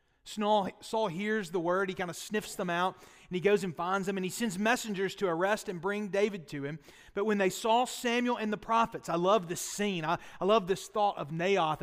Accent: American